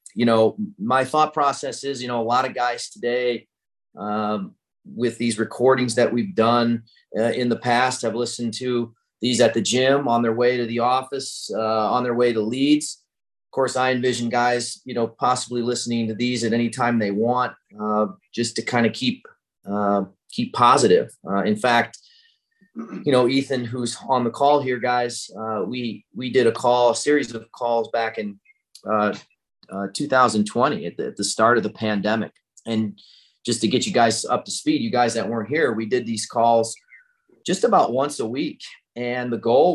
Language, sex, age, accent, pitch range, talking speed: English, male, 30-49, American, 110-125 Hz, 195 wpm